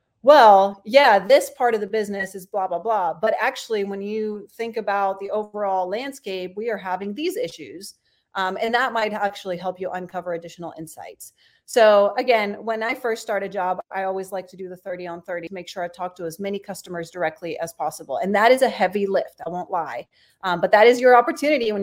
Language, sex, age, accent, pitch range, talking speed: English, female, 30-49, American, 180-220 Hz, 220 wpm